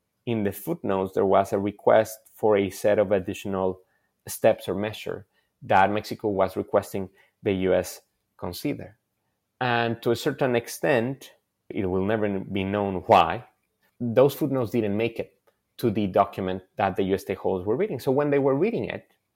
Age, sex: 30-49, male